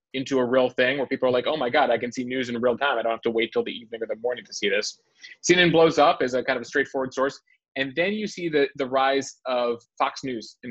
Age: 30-49